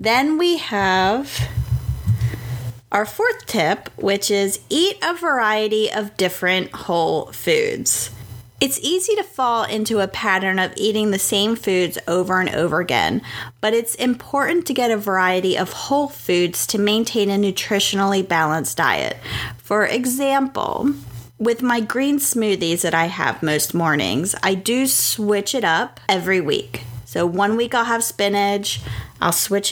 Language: English